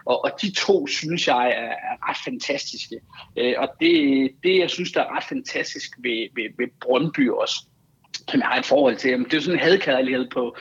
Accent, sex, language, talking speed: native, male, Danish, 210 wpm